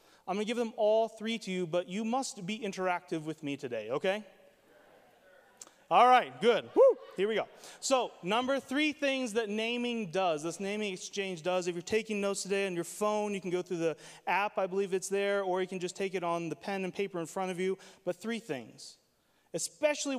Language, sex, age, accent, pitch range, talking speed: English, male, 30-49, American, 175-225 Hz, 215 wpm